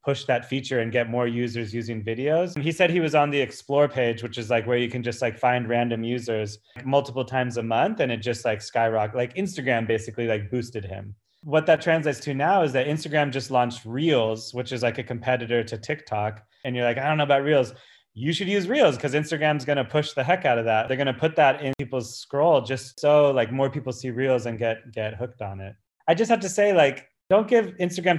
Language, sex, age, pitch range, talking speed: English, male, 30-49, 115-145 Hz, 245 wpm